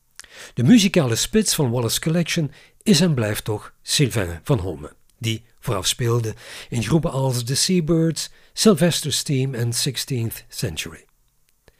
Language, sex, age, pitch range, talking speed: Dutch, male, 50-69, 115-160 Hz, 130 wpm